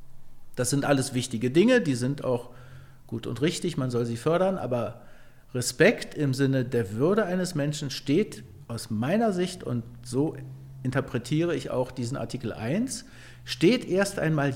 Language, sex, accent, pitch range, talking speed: German, male, German, 130-180 Hz, 155 wpm